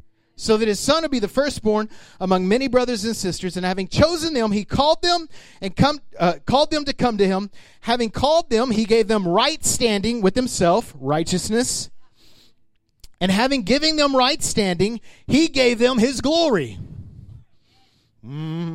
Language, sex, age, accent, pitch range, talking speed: English, male, 30-49, American, 150-250 Hz, 165 wpm